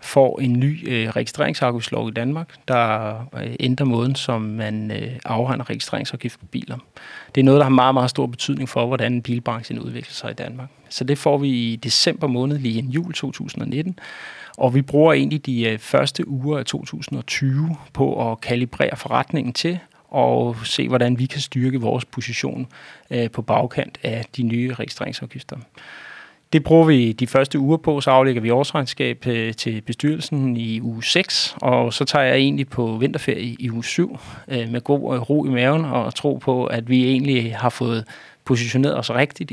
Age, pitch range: 30-49, 120-140 Hz